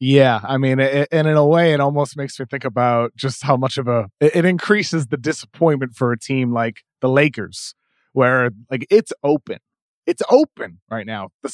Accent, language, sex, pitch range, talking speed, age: American, English, male, 115-145 Hz, 190 wpm, 20-39